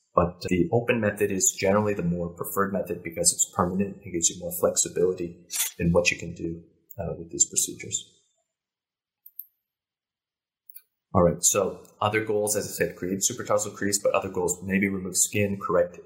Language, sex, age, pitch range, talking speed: English, male, 30-49, 90-105 Hz, 170 wpm